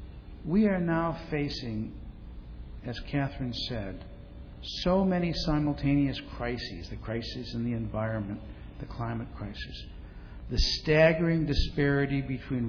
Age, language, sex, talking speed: 60-79, English, male, 110 wpm